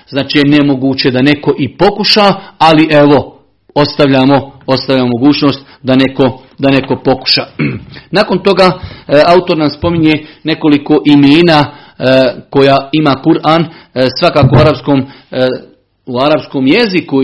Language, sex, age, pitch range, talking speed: Croatian, male, 50-69, 135-165 Hz, 115 wpm